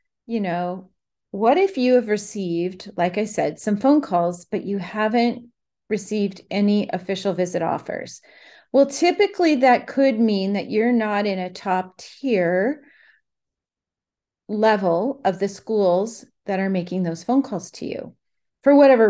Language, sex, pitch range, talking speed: English, female, 185-220 Hz, 150 wpm